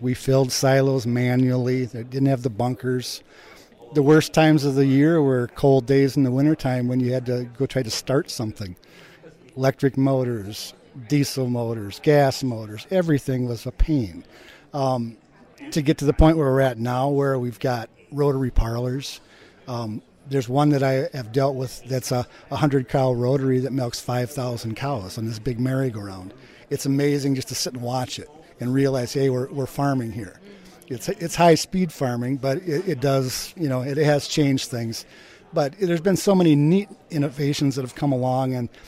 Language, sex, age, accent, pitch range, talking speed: English, male, 50-69, American, 125-145 Hz, 180 wpm